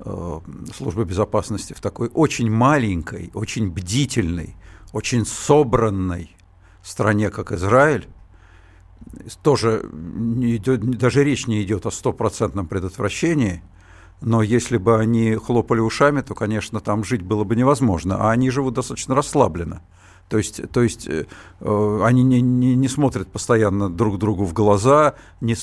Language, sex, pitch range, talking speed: Russian, male, 95-130 Hz, 130 wpm